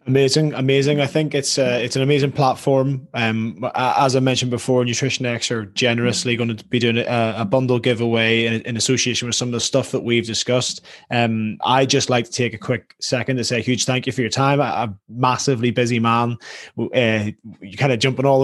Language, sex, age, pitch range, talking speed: English, male, 20-39, 110-130 Hz, 220 wpm